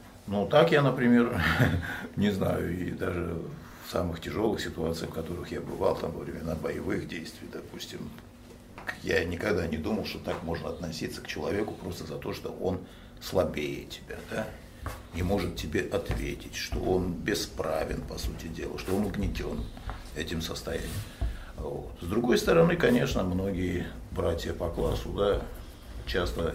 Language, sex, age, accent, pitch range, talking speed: Russian, male, 60-79, native, 80-100 Hz, 150 wpm